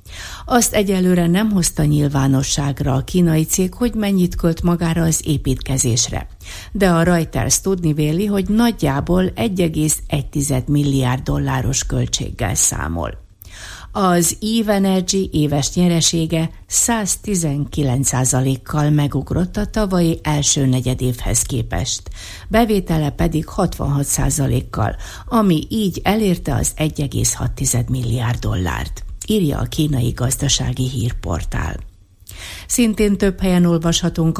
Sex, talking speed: female, 100 wpm